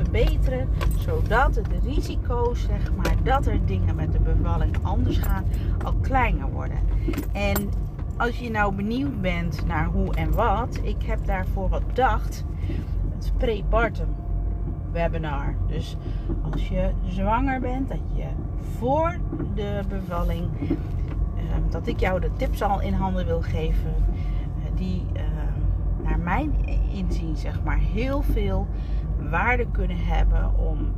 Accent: Dutch